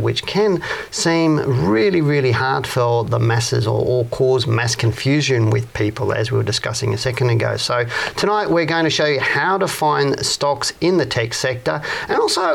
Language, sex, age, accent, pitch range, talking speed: English, male, 40-59, Australian, 125-160 Hz, 190 wpm